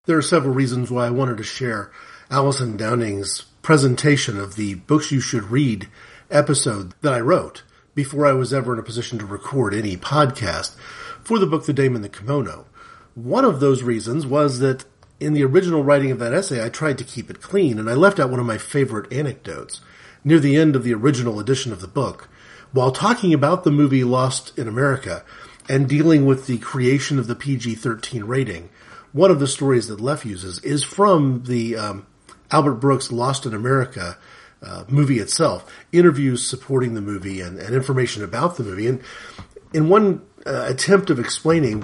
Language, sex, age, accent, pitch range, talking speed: English, male, 40-59, American, 120-150 Hz, 190 wpm